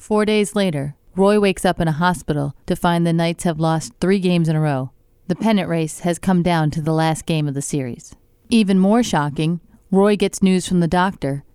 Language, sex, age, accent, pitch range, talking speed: English, female, 40-59, American, 145-185 Hz, 220 wpm